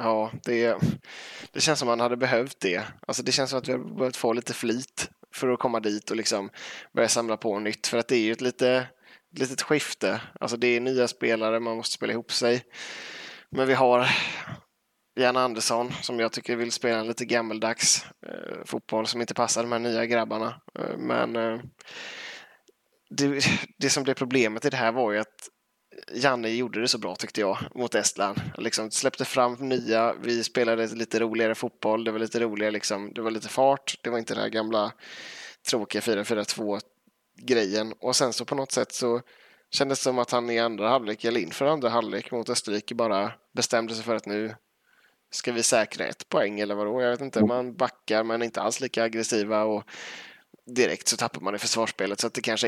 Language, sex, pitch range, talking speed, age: Swedish, male, 110-125 Hz, 195 wpm, 20-39